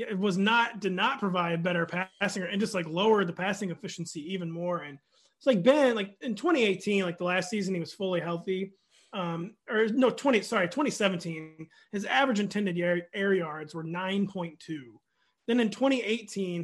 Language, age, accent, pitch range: English, 30-49, American, 175-215 Hz